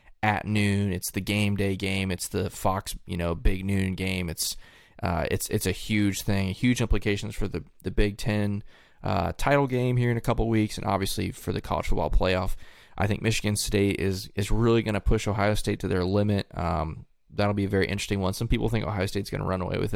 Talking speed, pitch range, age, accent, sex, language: 230 wpm, 95-115 Hz, 20-39, American, male, English